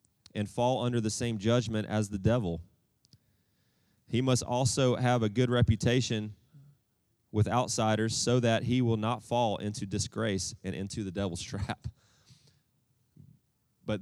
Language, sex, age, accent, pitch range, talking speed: English, male, 30-49, American, 105-125 Hz, 135 wpm